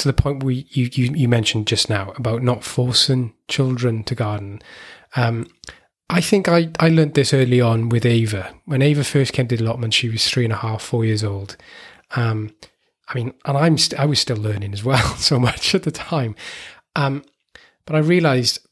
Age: 20-39